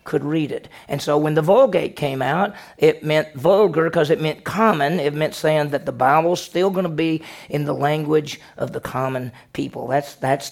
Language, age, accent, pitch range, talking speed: English, 40-59, American, 145-195 Hz, 205 wpm